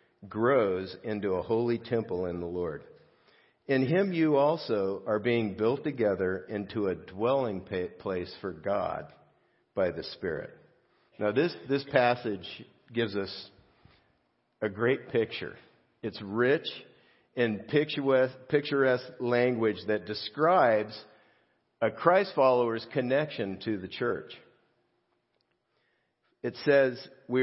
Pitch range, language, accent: 110-130 Hz, English, American